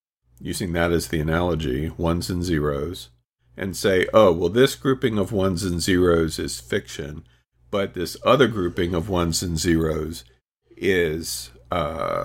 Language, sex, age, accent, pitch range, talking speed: English, male, 50-69, American, 80-100 Hz, 145 wpm